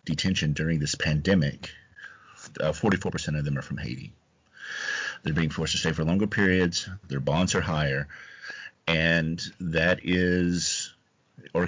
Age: 40-59